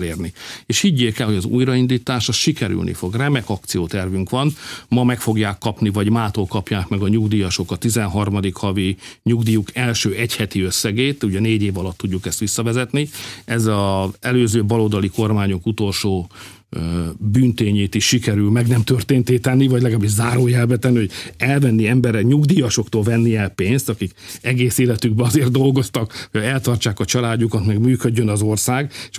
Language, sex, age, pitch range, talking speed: Hungarian, male, 50-69, 105-125 Hz, 150 wpm